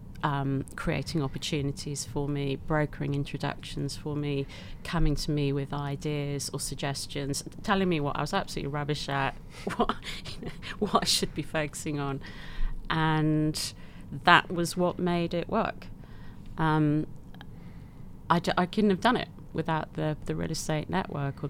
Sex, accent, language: female, British, English